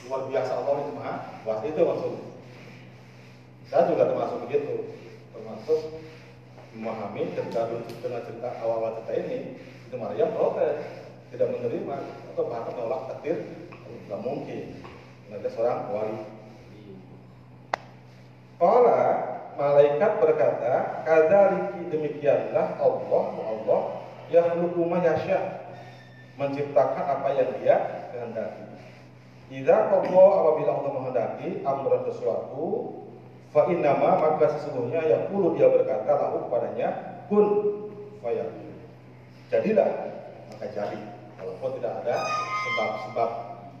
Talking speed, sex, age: 105 wpm, male, 40-59